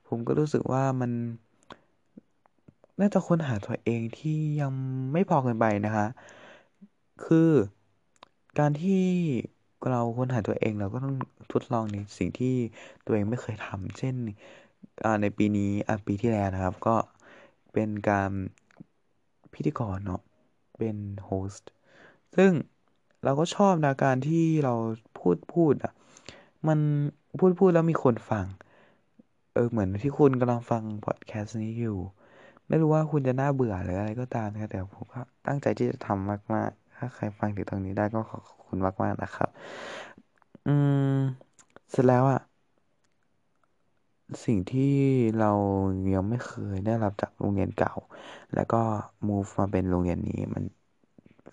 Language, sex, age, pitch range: Thai, male, 20-39, 105-135 Hz